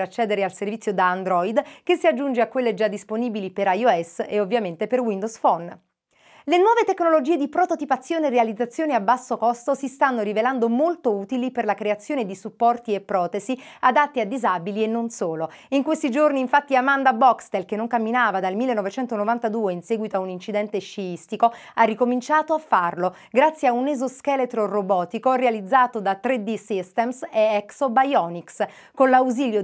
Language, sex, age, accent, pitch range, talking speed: Italian, female, 30-49, native, 200-265 Hz, 165 wpm